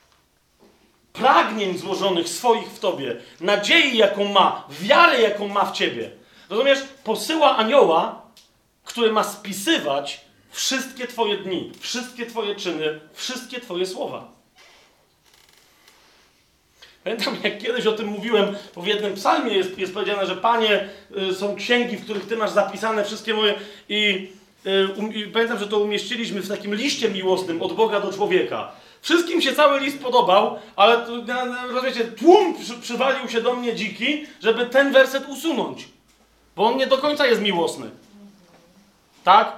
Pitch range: 205-255 Hz